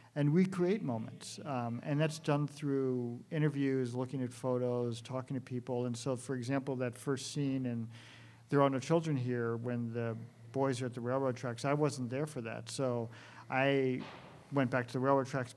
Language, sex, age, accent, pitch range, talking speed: English, male, 50-69, American, 120-135 Hz, 190 wpm